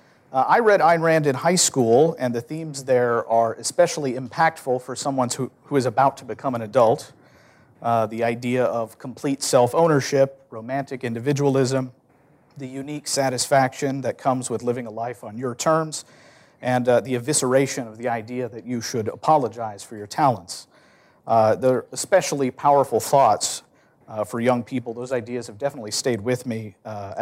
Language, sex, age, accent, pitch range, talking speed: English, male, 50-69, American, 120-145 Hz, 170 wpm